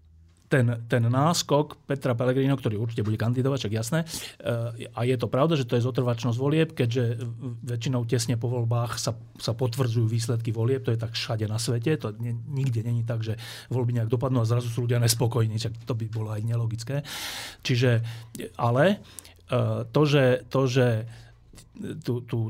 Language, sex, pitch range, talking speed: Slovak, male, 115-135 Hz, 160 wpm